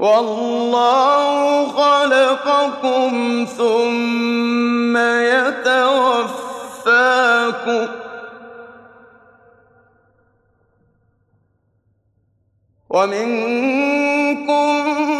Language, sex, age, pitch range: Arabic, male, 30-49, 235-265 Hz